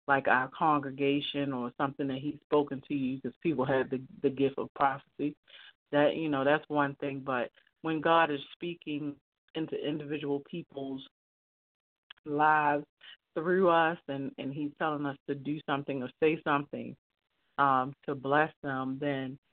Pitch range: 135-155 Hz